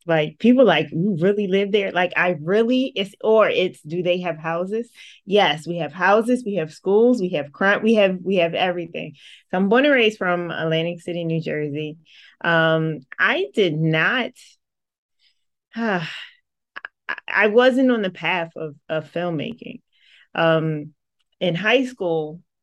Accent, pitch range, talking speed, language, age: American, 165-210 Hz, 160 wpm, English, 20-39